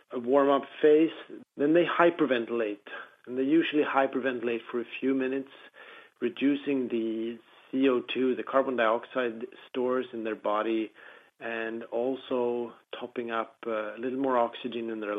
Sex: male